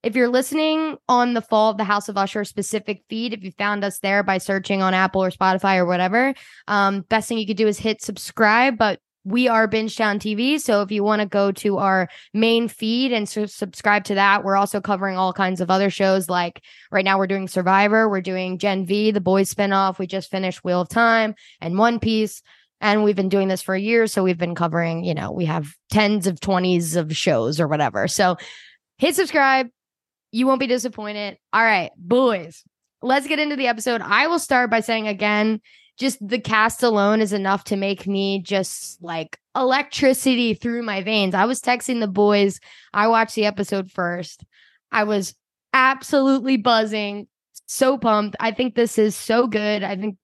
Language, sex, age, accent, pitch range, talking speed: English, female, 10-29, American, 195-230 Hz, 200 wpm